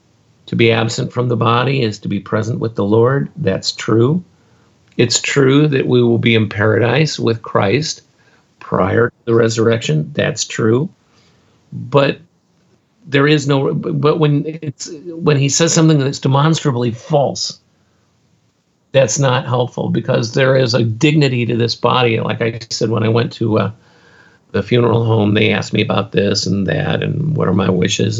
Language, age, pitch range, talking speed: English, 50-69, 110-140 Hz, 170 wpm